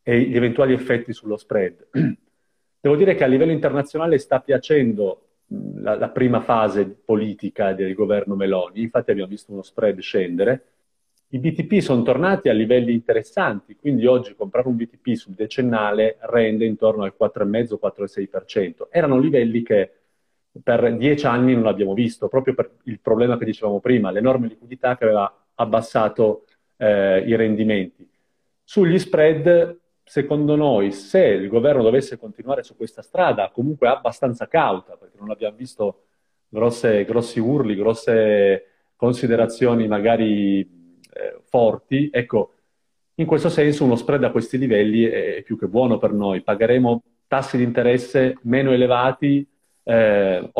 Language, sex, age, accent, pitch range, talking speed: Italian, male, 40-59, native, 110-135 Hz, 140 wpm